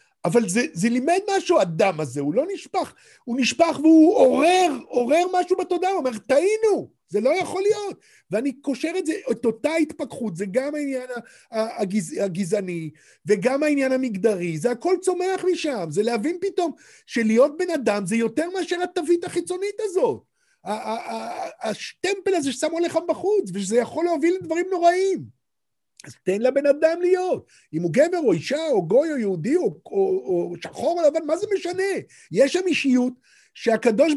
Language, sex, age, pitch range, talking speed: Hebrew, male, 50-69, 245-345 Hz, 170 wpm